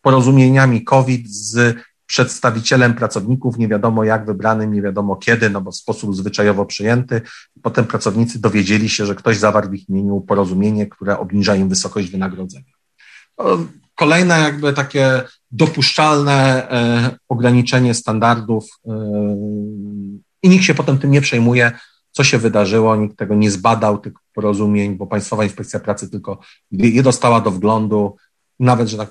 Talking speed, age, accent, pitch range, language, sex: 140 wpm, 40-59, native, 100-125 Hz, Polish, male